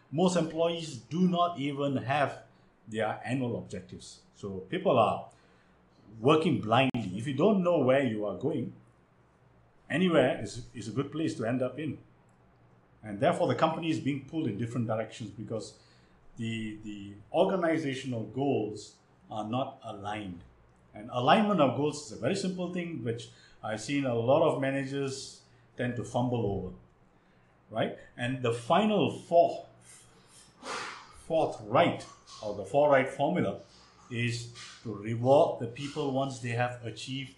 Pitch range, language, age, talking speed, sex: 100-145 Hz, English, 50-69, 145 wpm, male